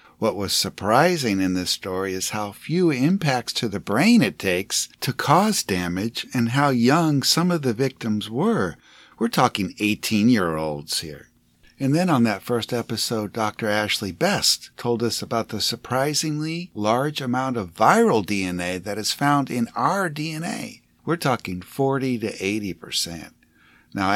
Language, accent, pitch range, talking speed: English, American, 95-130 Hz, 155 wpm